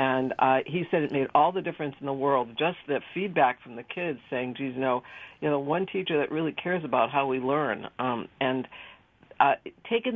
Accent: American